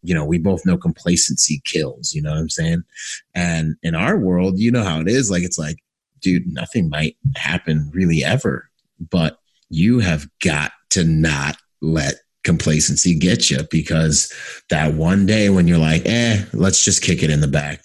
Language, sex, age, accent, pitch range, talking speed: English, male, 30-49, American, 75-95 Hz, 185 wpm